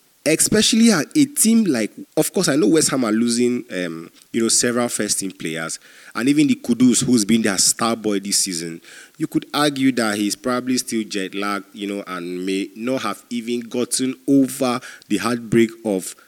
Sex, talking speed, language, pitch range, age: male, 180 wpm, English, 100-125 Hz, 30-49